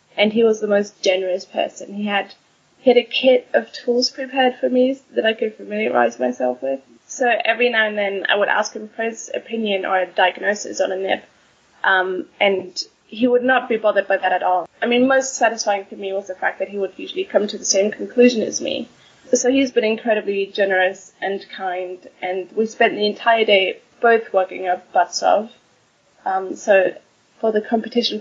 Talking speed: 200 wpm